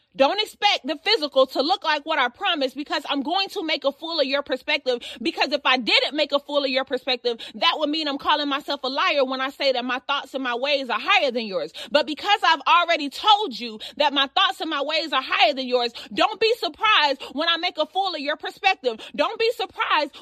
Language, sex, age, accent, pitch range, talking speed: English, female, 30-49, American, 280-370 Hz, 240 wpm